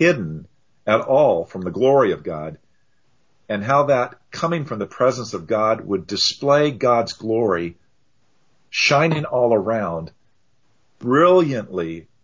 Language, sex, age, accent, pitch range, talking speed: English, male, 50-69, American, 100-135 Hz, 125 wpm